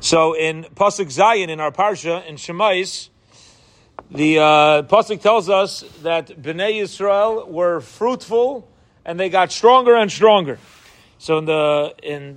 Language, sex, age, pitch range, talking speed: English, male, 40-59, 160-220 Hz, 135 wpm